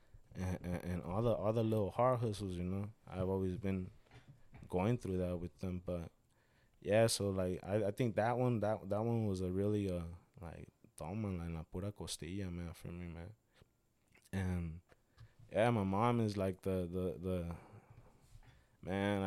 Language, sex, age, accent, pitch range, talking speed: English, male, 20-39, American, 85-105 Hz, 165 wpm